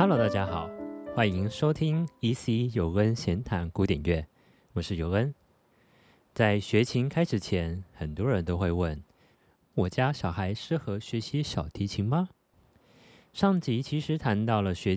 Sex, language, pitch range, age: male, Chinese, 90-135 Hz, 30-49